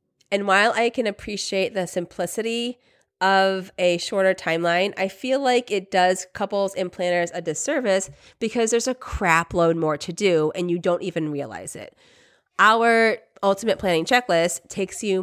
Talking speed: 160 wpm